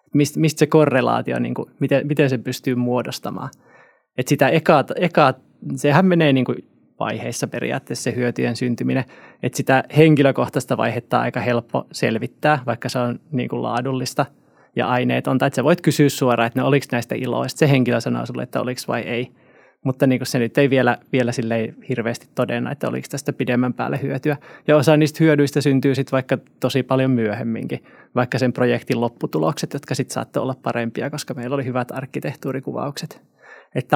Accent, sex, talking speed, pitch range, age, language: native, male, 170 wpm, 120-140 Hz, 20-39, Finnish